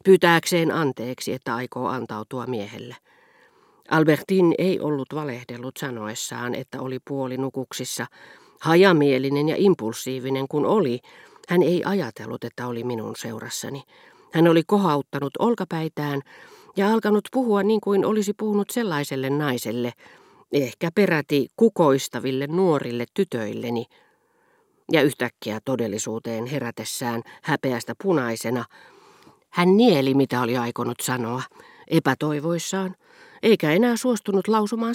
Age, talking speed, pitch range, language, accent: 40-59, 105 wpm, 125-180 Hz, Finnish, native